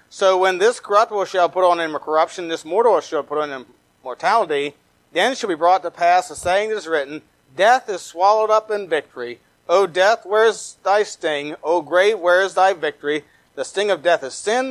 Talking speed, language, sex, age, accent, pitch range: 210 wpm, English, male, 40-59, American, 150-200 Hz